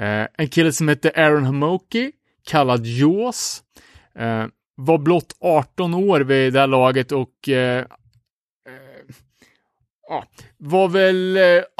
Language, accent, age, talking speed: Swedish, Norwegian, 30-49, 125 wpm